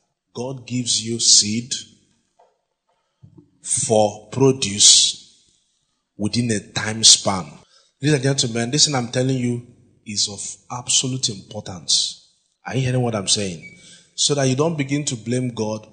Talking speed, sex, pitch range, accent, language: 135 wpm, male, 110-135 Hz, Nigerian, English